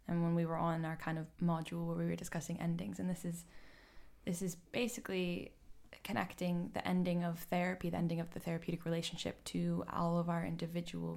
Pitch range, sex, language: 165-180 Hz, female, English